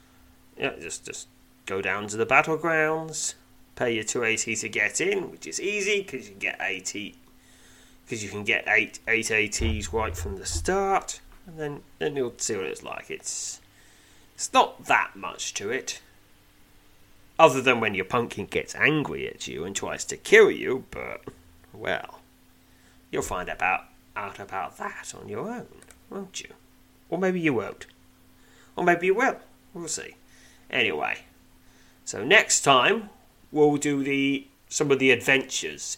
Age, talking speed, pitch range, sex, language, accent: 30-49, 160 wpm, 95-150 Hz, male, English, British